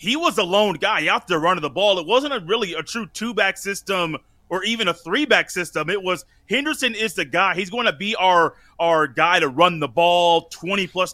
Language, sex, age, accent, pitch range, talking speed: English, male, 30-49, American, 170-210 Hz, 230 wpm